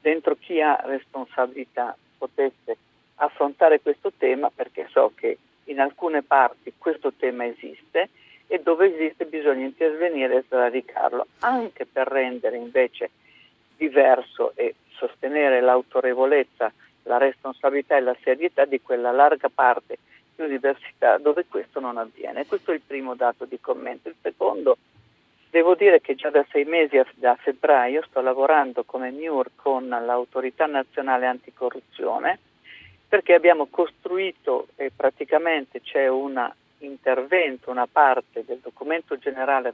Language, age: Italian, 50-69